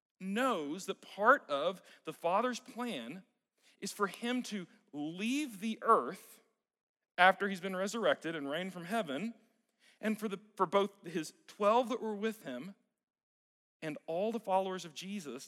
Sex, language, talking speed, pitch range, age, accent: male, English, 145 wpm, 180-235 Hz, 40-59, American